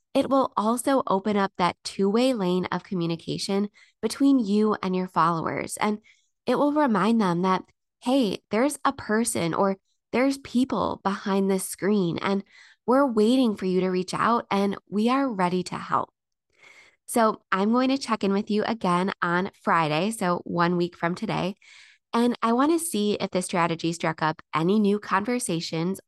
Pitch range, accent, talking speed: 180-225 Hz, American, 170 wpm